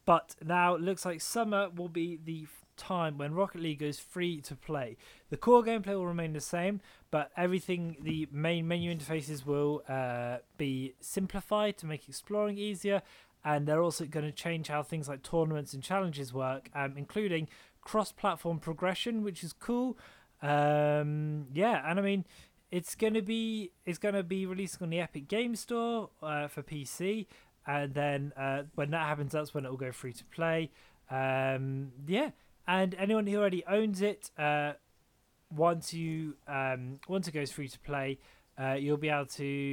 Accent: British